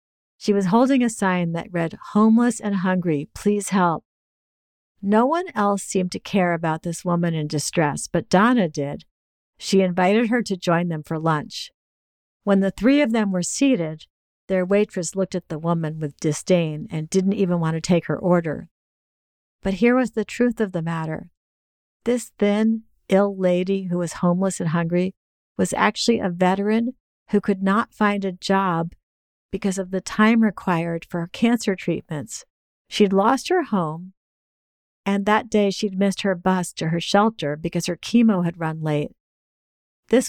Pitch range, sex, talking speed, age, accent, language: 165-205 Hz, female, 170 wpm, 50-69, American, English